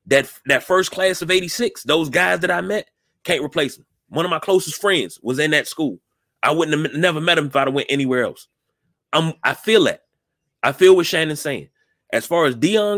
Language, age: English, 30-49